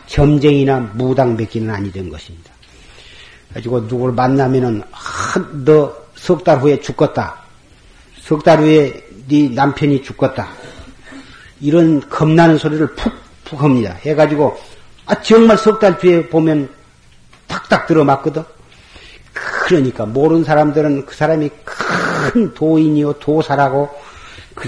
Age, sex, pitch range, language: 40-59, male, 135-165 Hz, Korean